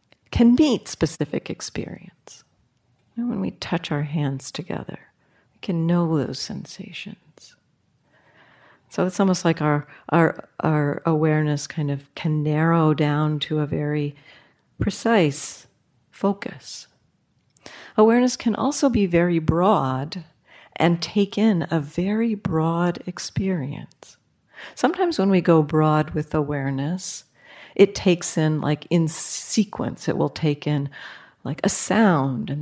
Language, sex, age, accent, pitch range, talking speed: English, female, 50-69, American, 150-185 Hz, 125 wpm